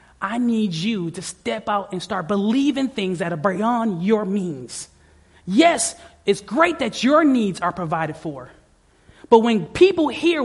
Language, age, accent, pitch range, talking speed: English, 30-49, American, 230-320 Hz, 160 wpm